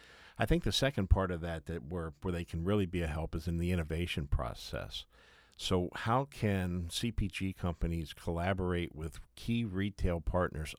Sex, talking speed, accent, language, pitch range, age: male, 170 wpm, American, English, 80-95 Hz, 50-69